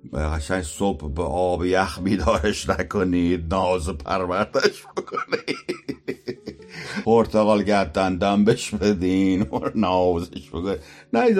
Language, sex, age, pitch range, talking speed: Persian, male, 60-79, 90-140 Hz, 85 wpm